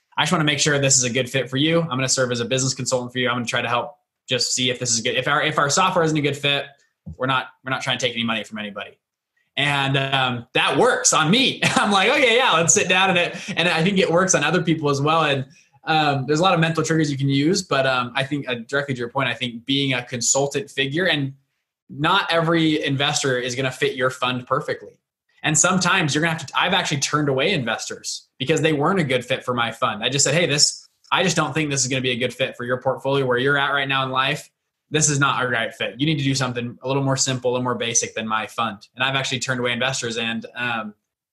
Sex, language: male, English